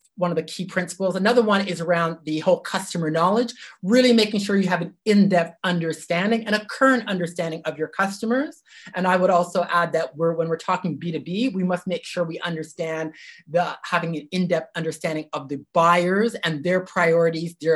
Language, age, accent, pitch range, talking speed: English, 30-49, American, 160-195 Hz, 195 wpm